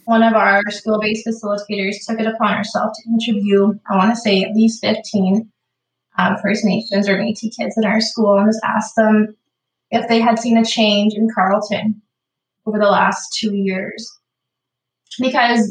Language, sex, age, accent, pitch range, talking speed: English, female, 20-39, American, 205-230 Hz, 170 wpm